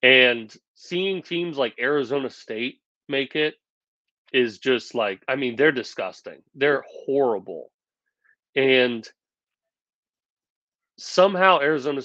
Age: 30-49